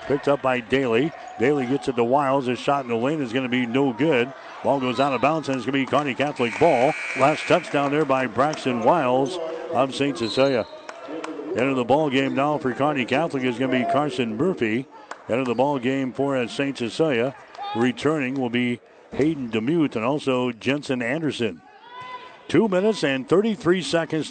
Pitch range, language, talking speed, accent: 125-145 Hz, English, 195 wpm, American